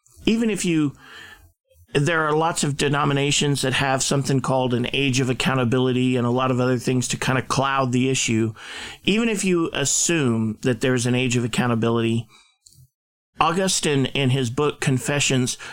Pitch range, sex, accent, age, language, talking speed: 130-160 Hz, male, American, 50-69, English, 165 wpm